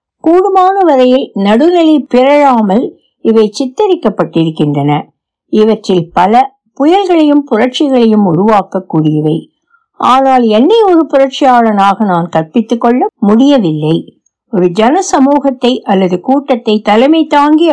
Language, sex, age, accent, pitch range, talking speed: Tamil, female, 60-79, native, 185-275 Hz, 90 wpm